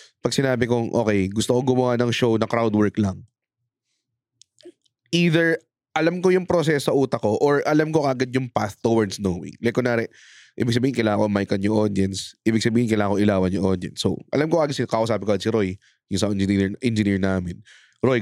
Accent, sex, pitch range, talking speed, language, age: Filipino, male, 105-145 Hz, 200 wpm, English, 20-39